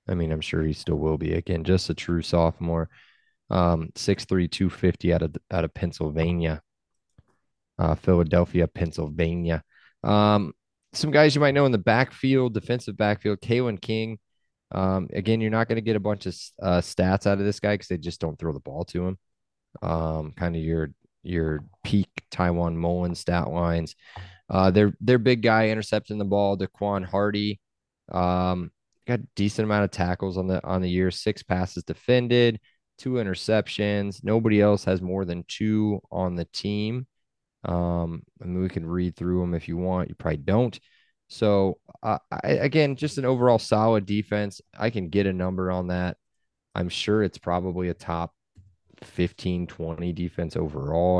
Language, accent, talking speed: English, American, 175 wpm